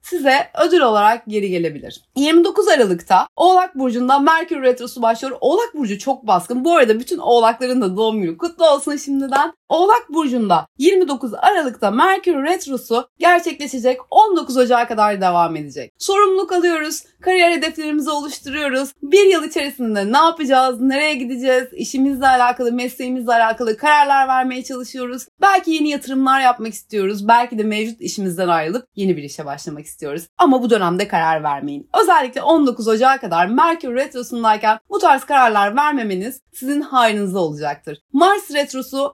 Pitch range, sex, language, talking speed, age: 210-300 Hz, female, Turkish, 140 wpm, 30-49